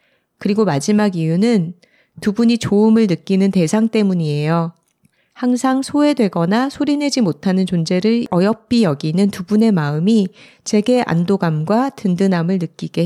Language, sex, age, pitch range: Korean, female, 40-59, 165-225 Hz